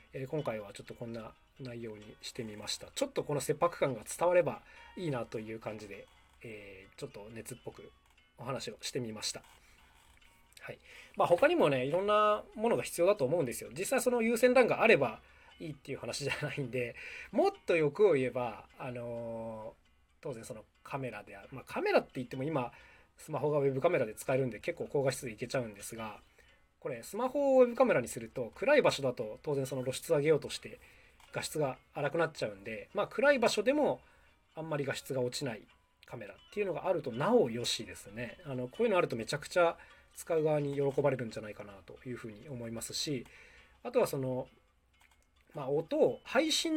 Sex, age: male, 20-39